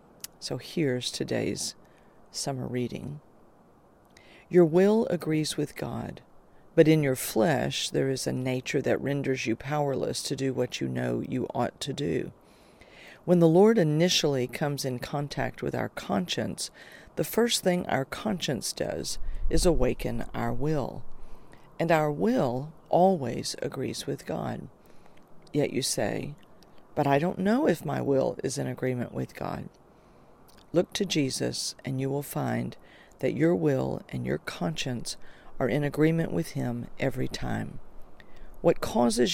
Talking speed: 145 wpm